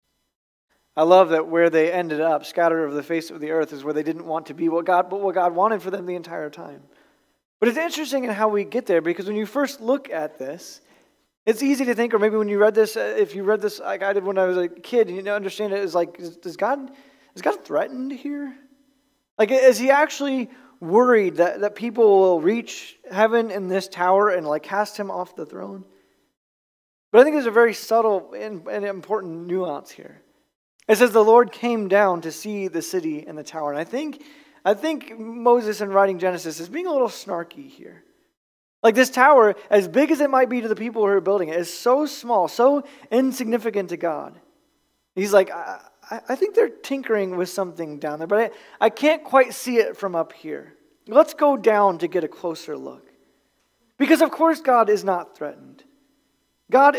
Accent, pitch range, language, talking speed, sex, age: American, 180-255 Hz, English, 215 wpm, male, 20-39